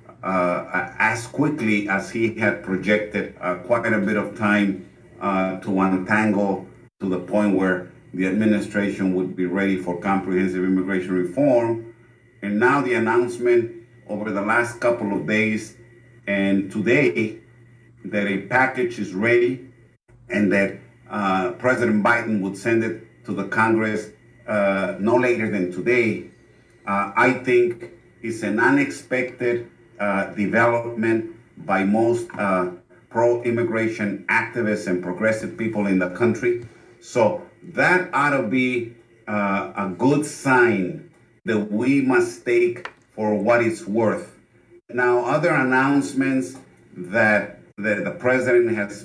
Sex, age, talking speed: male, 50-69, 130 wpm